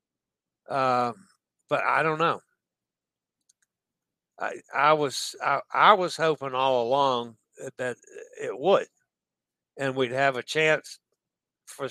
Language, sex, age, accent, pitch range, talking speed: English, male, 60-79, American, 130-185 Hz, 115 wpm